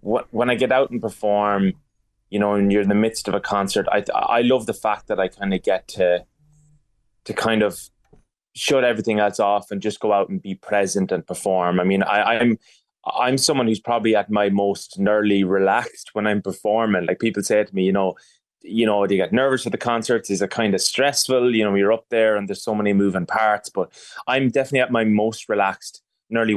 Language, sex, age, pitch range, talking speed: English, male, 20-39, 95-115 Hz, 225 wpm